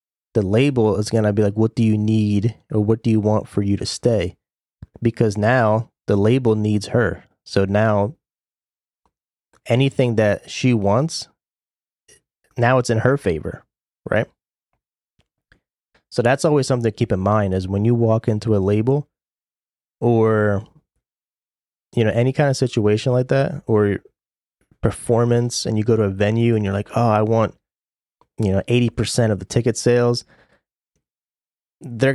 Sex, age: male, 20-39